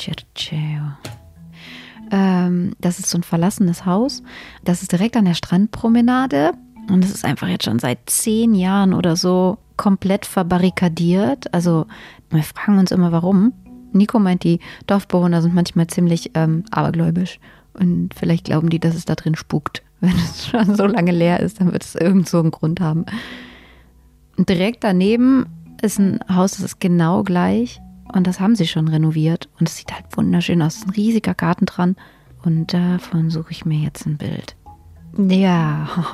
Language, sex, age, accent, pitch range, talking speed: German, female, 30-49, German, 160-200 Hz, 165 wpm